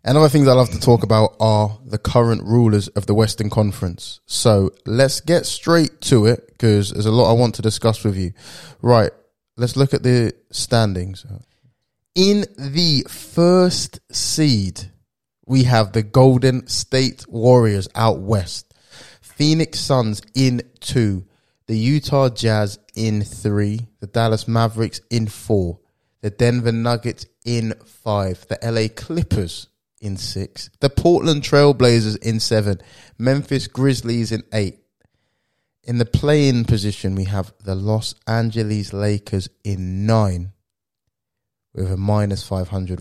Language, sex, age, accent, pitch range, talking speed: English, male, 20-39, British, 105-125 Hz, 140 wpm